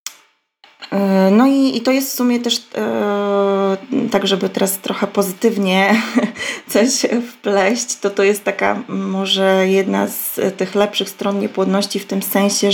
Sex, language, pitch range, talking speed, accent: female, Polish, 185-205 Hz, 135 wpm, native